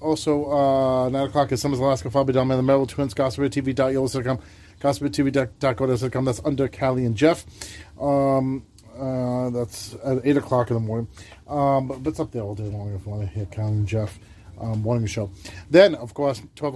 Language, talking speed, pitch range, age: English, 220 wpm, 105-140 Hz, 30-49